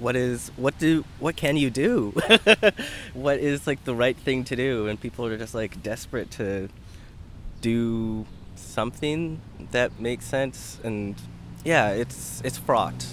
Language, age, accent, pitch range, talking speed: English, 20-39, American, 100-130 Hz, 150 wpm